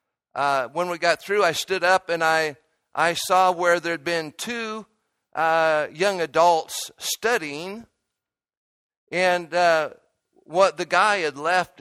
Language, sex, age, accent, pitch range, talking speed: English, male, 50-69, American, 155-190 Hz, 135 wpm